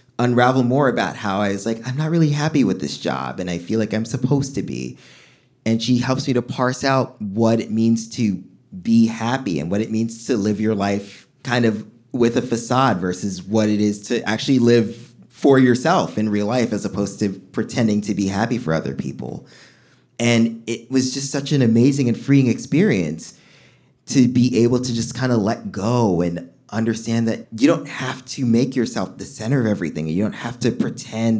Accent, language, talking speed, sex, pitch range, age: American, English, 205 wpm, male, 105-130 Hz, 20-39